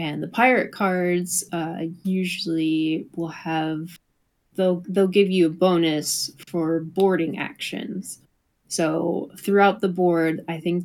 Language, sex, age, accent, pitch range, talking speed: English, female, 20-39, American, 160-185 Hz, 125 wpm